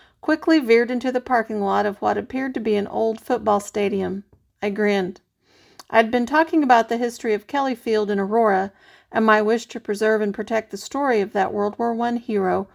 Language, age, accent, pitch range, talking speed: English, 40-59, American, 195-235 Hz, 205 wpm